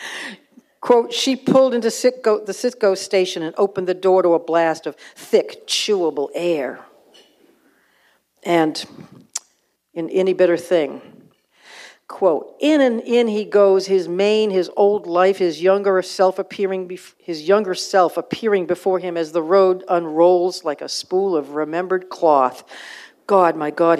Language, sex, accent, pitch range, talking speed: English, female, American, 155-195 Hz, 145 wpm